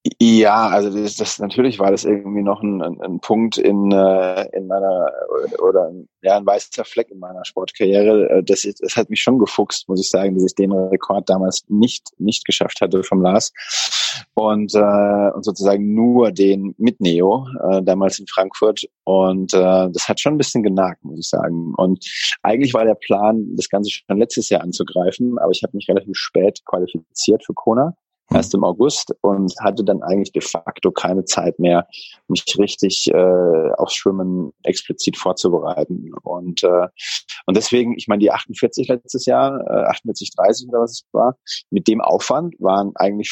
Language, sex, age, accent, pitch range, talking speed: German, male, 20-39, German, 95-110 Hz, 180 wpm